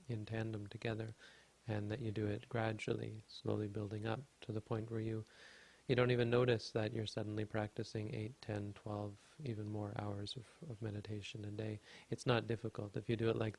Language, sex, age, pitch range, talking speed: English, male, 30-49, 105-115 Hz, 195 wpm